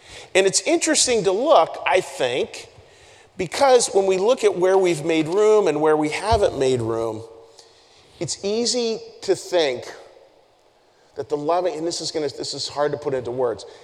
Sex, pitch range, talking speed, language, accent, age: male, 155-225 Hz, 175 wpm, English, American, 40-59